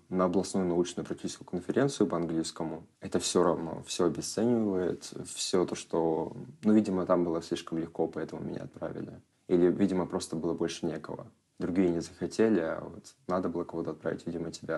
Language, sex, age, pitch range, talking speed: Russian, male, 20-39, 80-95 Hz, 160 wpm